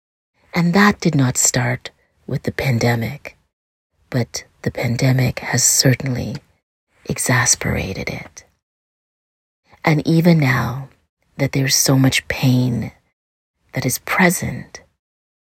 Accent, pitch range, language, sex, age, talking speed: American, 120-135 Hz, English, female, 30-49, 100 wpm